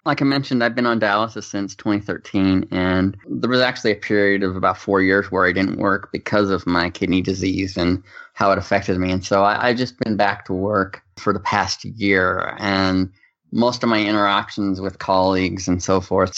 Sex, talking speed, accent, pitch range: male, 205 wpm, American, 95-115 Hz